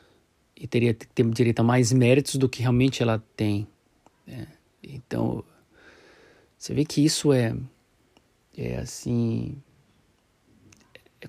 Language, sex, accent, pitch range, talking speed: Portuguese, male, Brazilian, 115-135 Hz, 110 wpm